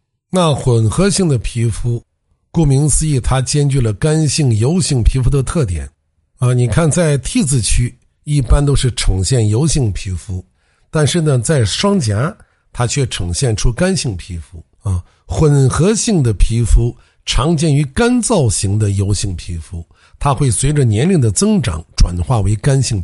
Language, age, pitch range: Chinese, 60-79, 100-155 Hz